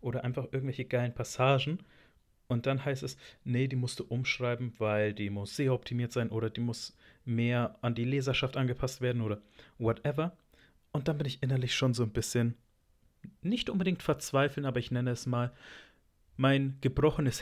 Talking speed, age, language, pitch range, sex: 170 wpm, 40-59, German, 110-130 Hz, male